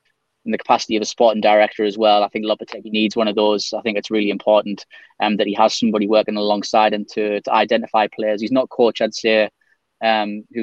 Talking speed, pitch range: 225 wpm, 105-115 Hz